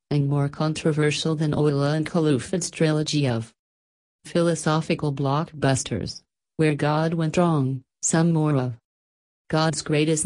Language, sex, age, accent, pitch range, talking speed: English, female, 40-59, American, 130-160 Hz, 115 wpm